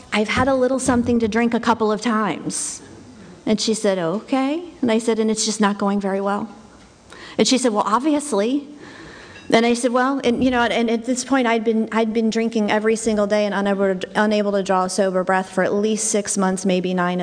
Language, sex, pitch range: English, female, 180-220 Hz